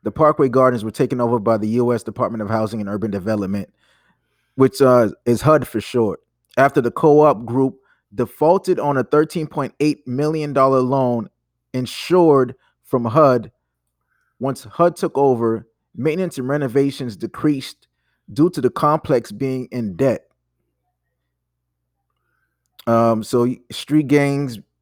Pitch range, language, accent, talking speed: 110-135 Hz, English, American, 130 wpm